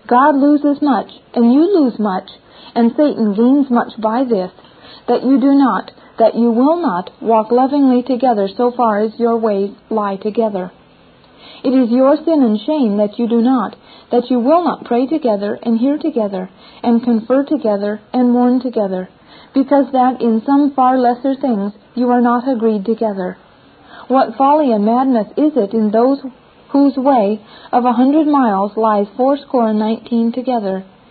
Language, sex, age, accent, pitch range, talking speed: English, female, 40-59, American, 220-265 Hz, 170 wpm